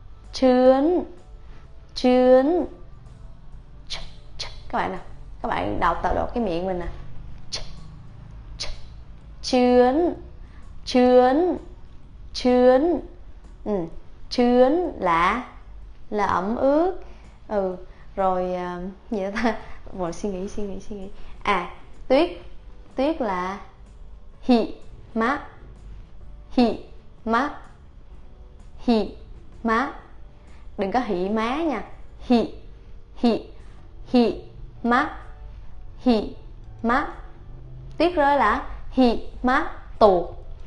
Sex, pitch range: female, 185-250 Hz